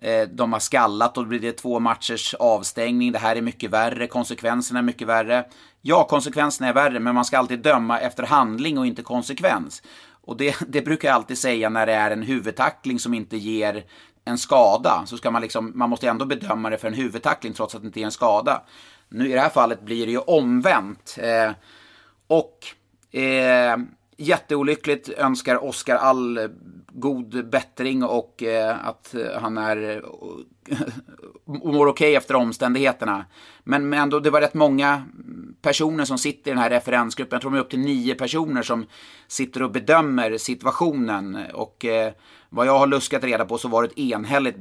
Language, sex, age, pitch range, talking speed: Swedish, male, 30-49, 110-135 Hz, 185 wpm